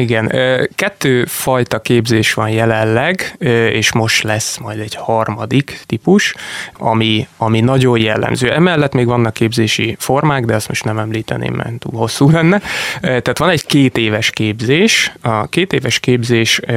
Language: Hungarian